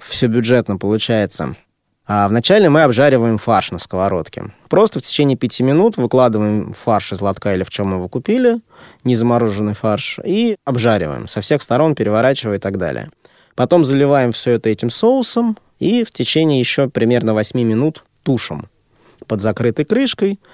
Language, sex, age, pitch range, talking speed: Russian, male, 20-39, 110-140 Hz, 155 wpm